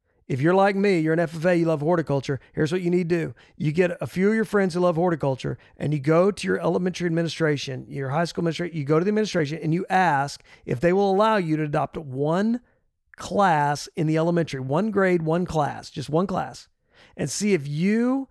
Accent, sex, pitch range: American, male, 155-195 Hz